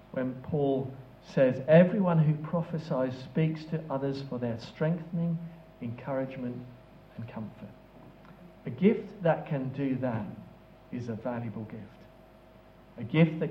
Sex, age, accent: male, 50-69, British